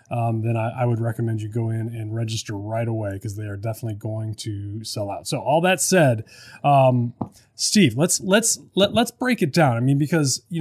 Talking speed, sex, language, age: 215 wpm, male, English, 30-49